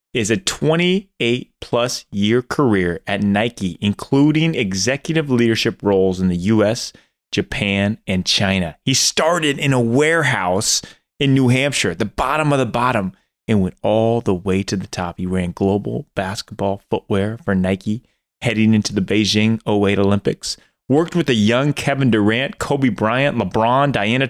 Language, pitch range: English, 95-135 Hz